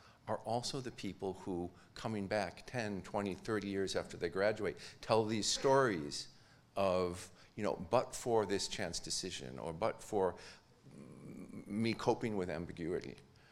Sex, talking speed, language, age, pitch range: male, 140 wpm, English, 50-69, 95-120 Hz